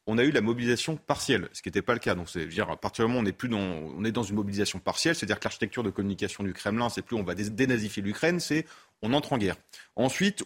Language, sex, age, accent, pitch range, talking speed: French, male, 30-49, French, 105-155 Hz, 280 wpm